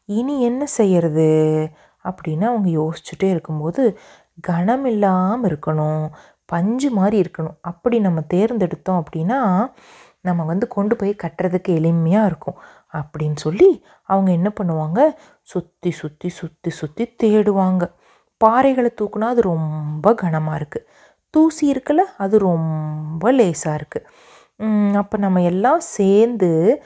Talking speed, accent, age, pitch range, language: 105 wpm, native, 30-49, 165-225 Hz, Tamil